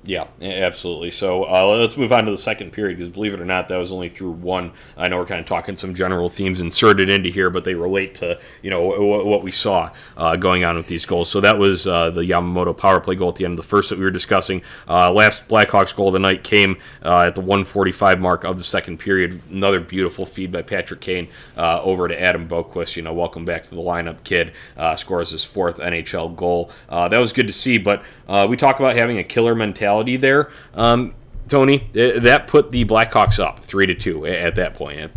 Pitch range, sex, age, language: 85-105 Hz, male, 30-49, English